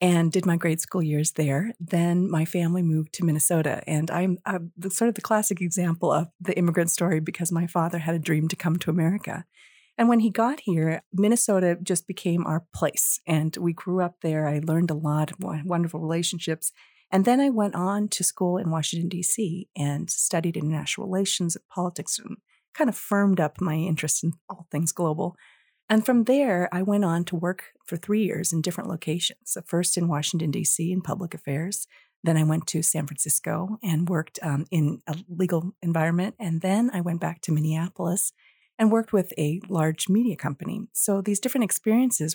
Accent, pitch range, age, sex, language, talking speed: American, 160-195 Hz, 40-59, female, English, 190 wpm